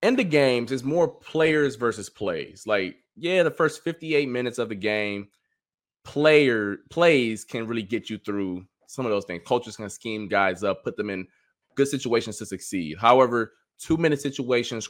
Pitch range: 105-135 Hz